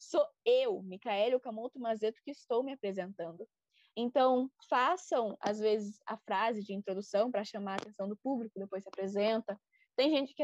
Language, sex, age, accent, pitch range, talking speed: Portuguese, female, 10-29, Brazilian, 215-300 Hz, 165 wpm